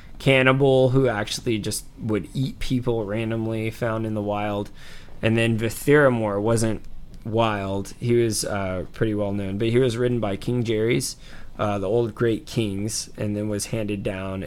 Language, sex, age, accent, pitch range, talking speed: English, male, 20-39, American, 105-125 Hz, 165 wpm